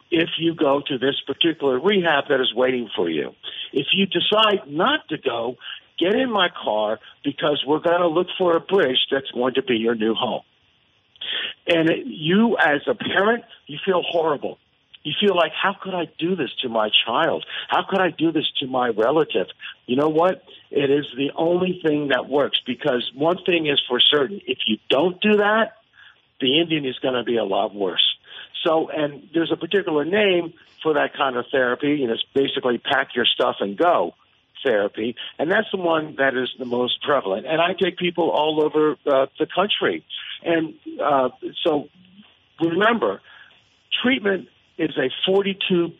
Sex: male